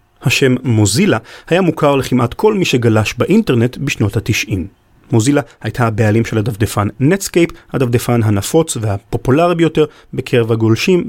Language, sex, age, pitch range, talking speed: Hebrew, male, 40-59, 115-165 Hz, 125 wpm